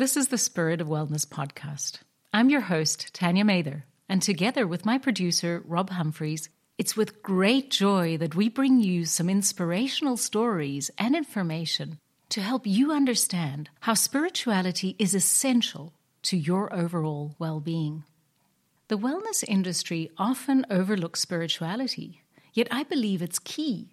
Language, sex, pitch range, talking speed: English, female, 160-220 Hz, 140 wpm